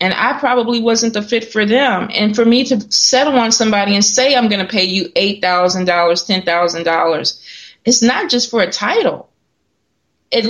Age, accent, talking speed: 30-49, American, 175 wpm